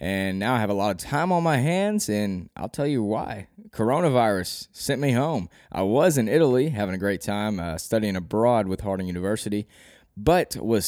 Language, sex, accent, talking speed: English, male, American, 200 wpm